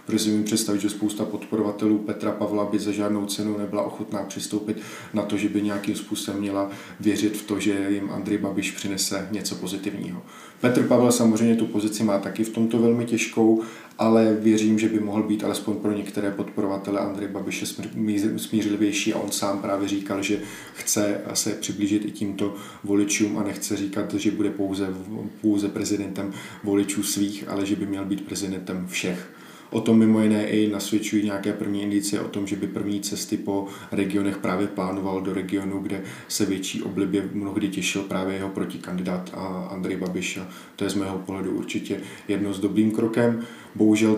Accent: native